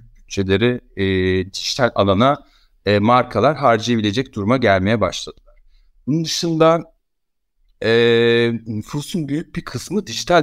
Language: Turkish